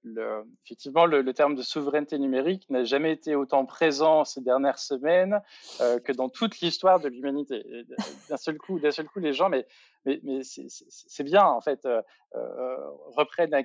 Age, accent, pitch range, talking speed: 20-39, French, 130-165 Hz, 190 wpm